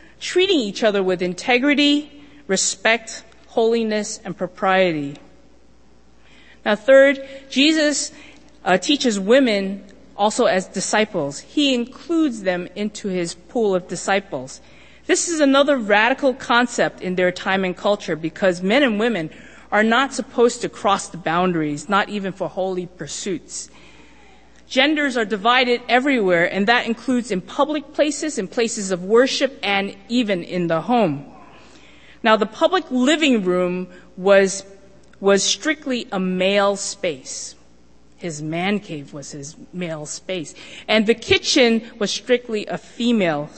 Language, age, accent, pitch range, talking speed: English, 40-59, American, 180-250 Hz, 130 wpm